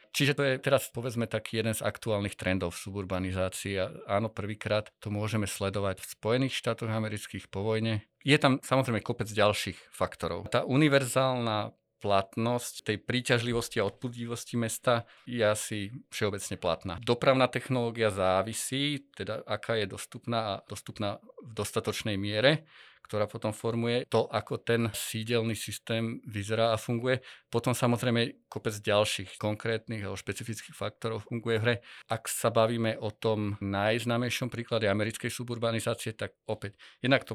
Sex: male